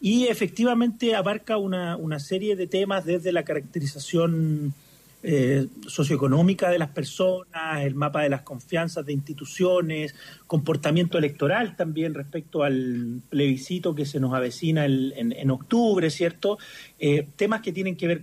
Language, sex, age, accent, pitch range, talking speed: Spanish, male, 40-59, Argentinian, 155-210 Hz, 145 wpm